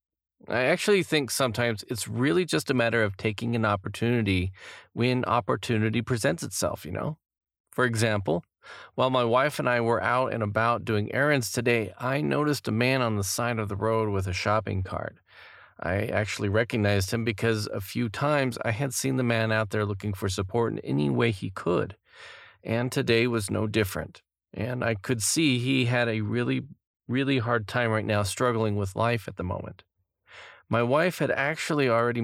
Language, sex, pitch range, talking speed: English, male, 100-125 Hz, 185 wpm